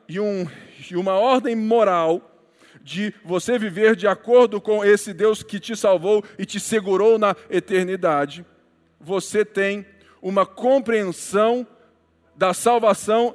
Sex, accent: male, Brazilian